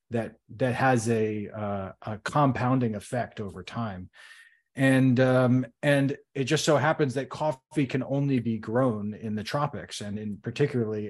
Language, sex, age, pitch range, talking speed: English, male, 30-49, 110-135 Hz, 155 wpm